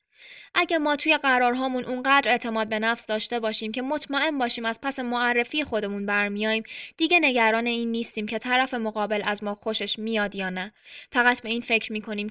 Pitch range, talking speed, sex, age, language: 210-260 Hz, 175 wpm, female, 20-39, Persian